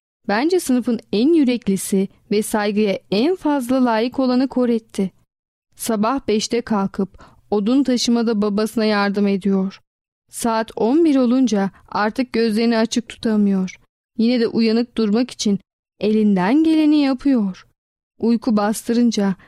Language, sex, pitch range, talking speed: Turkish, female, 210-250 Hz, 115 wpm